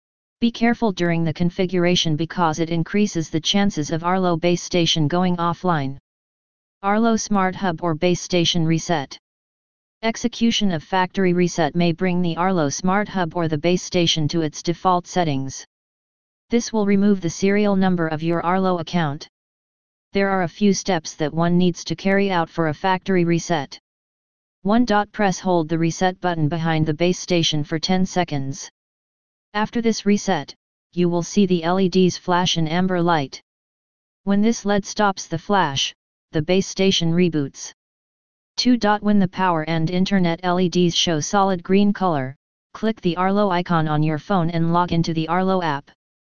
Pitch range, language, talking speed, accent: 165-195 Hz, English, 160 wpm, American